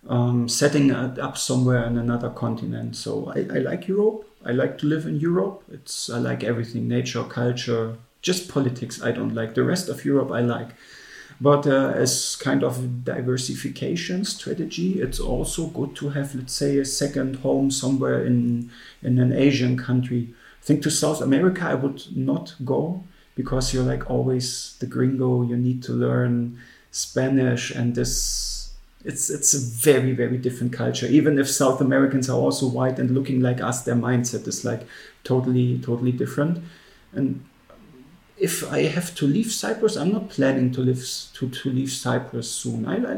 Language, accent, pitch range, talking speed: Russian, German, 120-145 Hz, 175 wpm